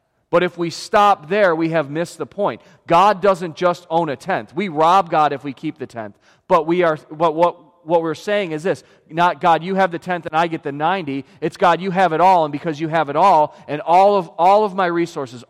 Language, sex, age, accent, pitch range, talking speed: English, male, 40-59, American, 145-185 Hz, 250 wpm